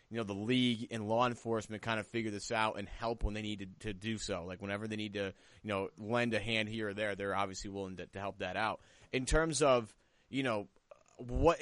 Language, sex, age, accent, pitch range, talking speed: English, male, 30-49, American, 105-130 Hz, 250 wpm